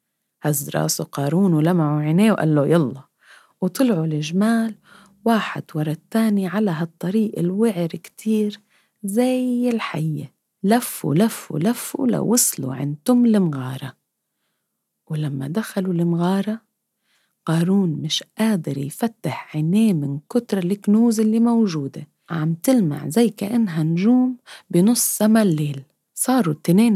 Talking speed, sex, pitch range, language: 100 wpm, female, 155-220 Hz, English